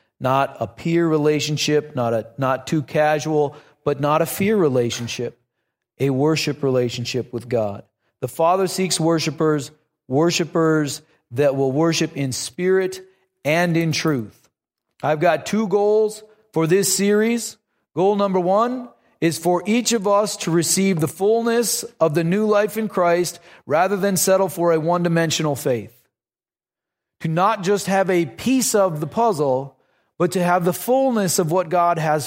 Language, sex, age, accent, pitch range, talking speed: English, male, 40-59, American, 155-200 Hz, 155 wpm